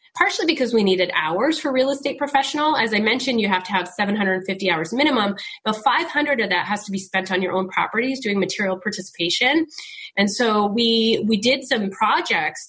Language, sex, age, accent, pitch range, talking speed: English, female, 20-39, American, 175-220 Hz, 195 wpm